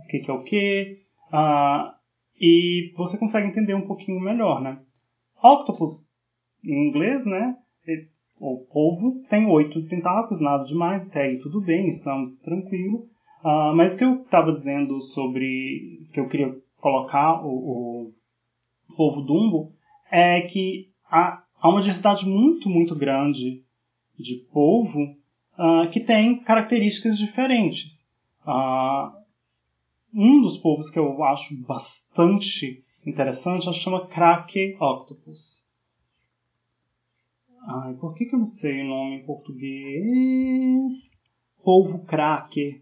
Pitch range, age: 140-200 Hz, 20-39